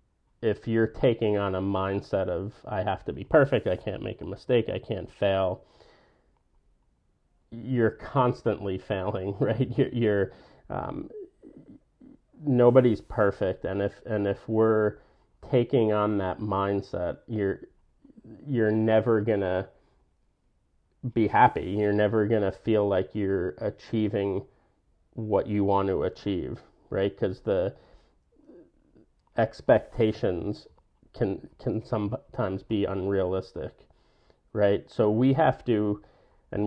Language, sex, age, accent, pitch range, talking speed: English, male, 30-49, American, 95-115 Hz, 120 wpm